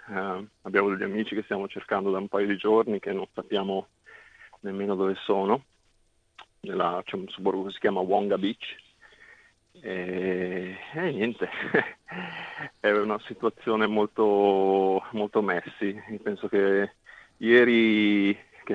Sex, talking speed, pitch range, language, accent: male, 130 wpm, 95-105 Hz, Italian, native